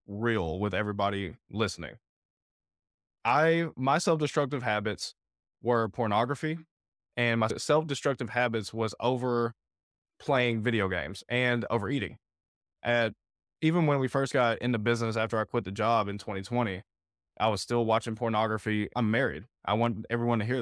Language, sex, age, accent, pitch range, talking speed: English, male, 20-39, American, 110-125 Hz, 140 wpm